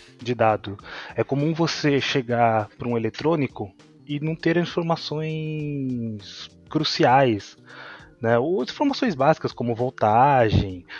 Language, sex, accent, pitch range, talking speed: Portuguese, male, Brazilian, 115-150 Hz, 110 wpm